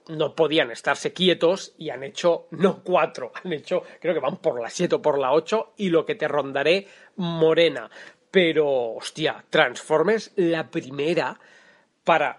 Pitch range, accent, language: 160-210 Hz, Spanish, Spanish